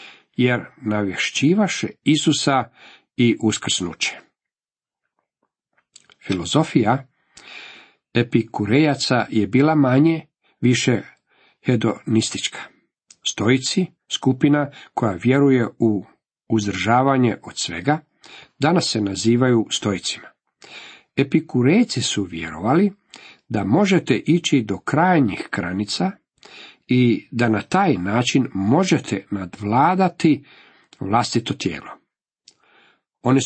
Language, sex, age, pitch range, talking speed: Croatian, male, 50-69, 105-140 Hz, 75 wpm